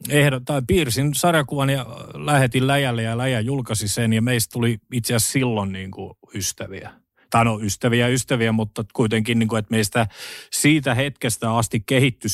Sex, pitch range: male, 105-130 Hz